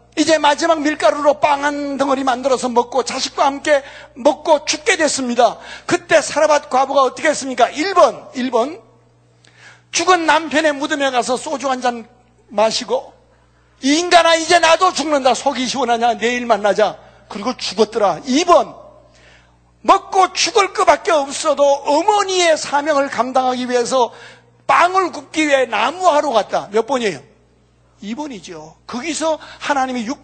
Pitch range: 185-300 Hz